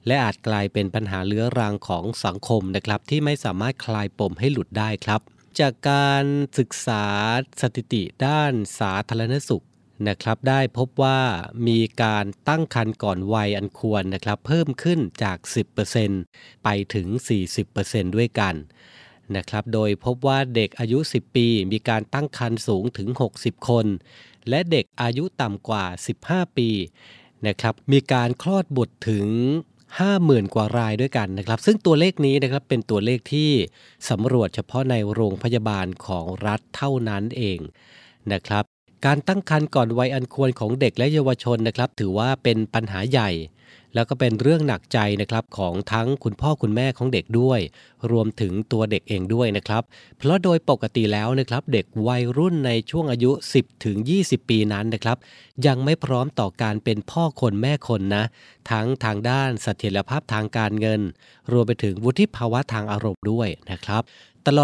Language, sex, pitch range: Thai, male, 105-135 Hz